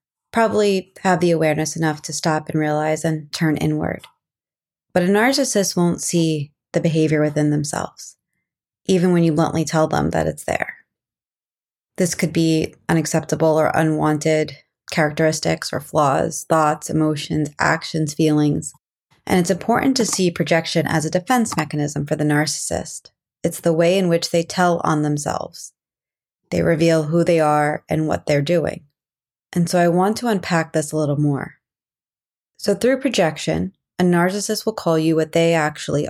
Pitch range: 155-175 Hz